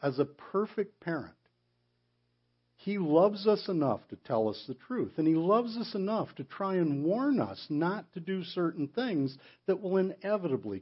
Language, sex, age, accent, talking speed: English, male, 60-79, American, 170 wpm